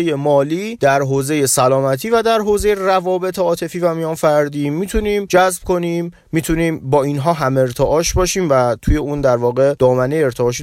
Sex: male